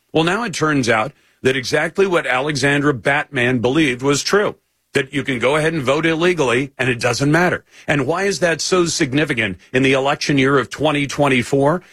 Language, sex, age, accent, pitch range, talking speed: English, male, 50-69, American, 125-165 Hz, 185 wpm